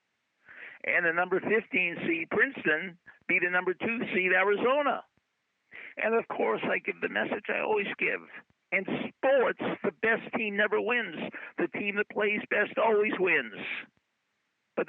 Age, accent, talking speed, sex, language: 50-69, American, 150 wpm, male, English